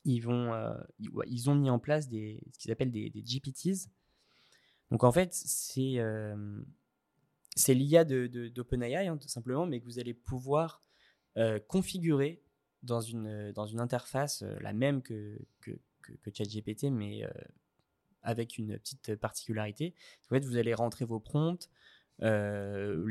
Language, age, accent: French, 20-39, French